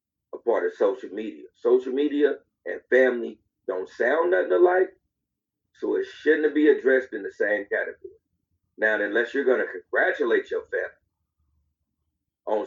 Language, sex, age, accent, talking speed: English, male, 40-59, American, 145 wpm